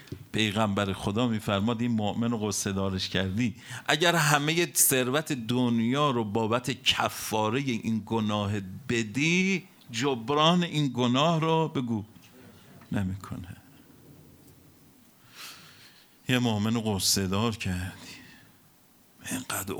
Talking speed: 80 wpm